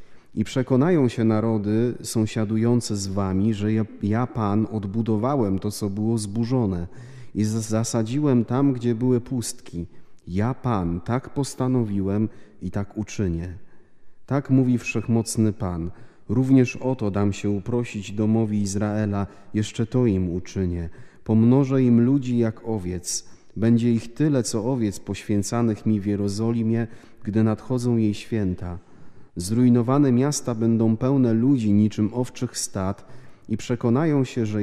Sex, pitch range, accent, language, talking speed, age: male, 105-125 Hz, native, Polish, 130 wpm, 30-49